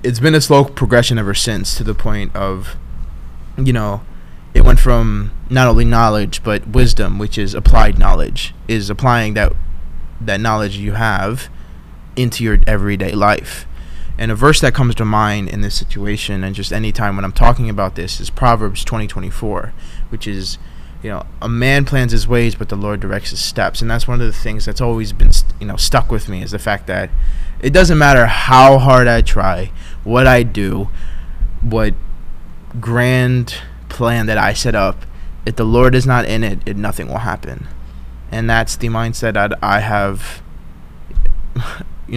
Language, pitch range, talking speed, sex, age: English, 95-115 Hz, 185 wpm, male, 20-39